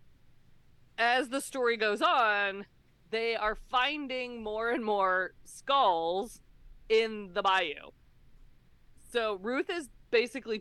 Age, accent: 20-39, American